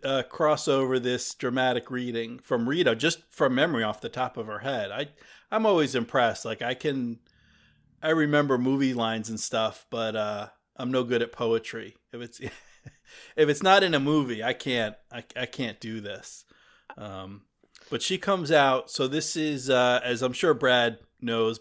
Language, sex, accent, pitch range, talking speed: English, male, American, 115-140 Hz, 185 wpm